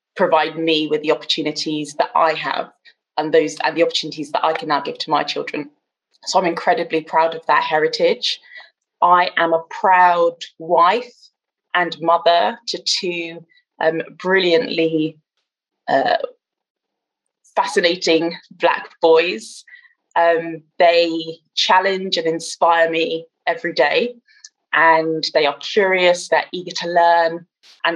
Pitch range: 160-210 Hz